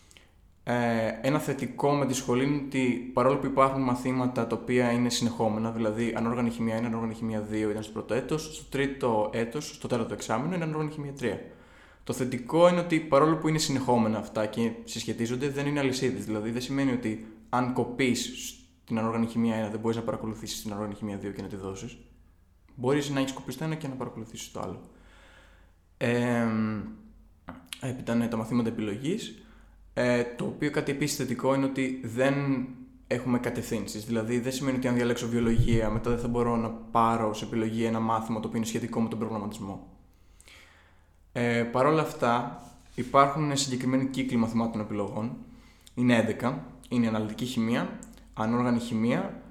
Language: Greek